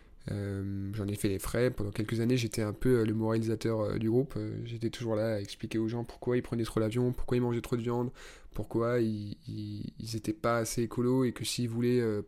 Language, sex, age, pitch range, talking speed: French, male, 20-39, 110-125 Hz, 240 wpm